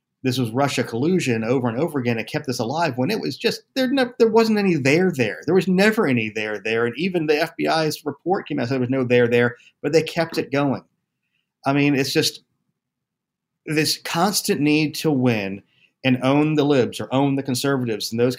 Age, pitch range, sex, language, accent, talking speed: 40-59, 120-160 Hz, male, English, American, 220 wpm